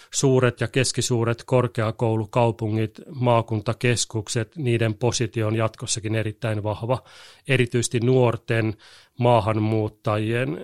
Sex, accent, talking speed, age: male, native, 85 wpm, 30-49